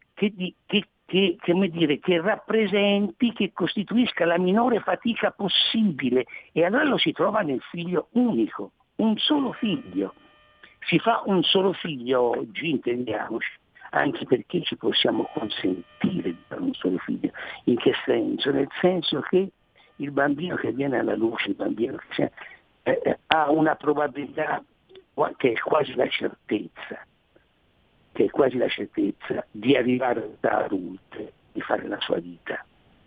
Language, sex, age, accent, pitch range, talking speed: Italian, male, 60-79, native, 145-235 Hz, 145 wpm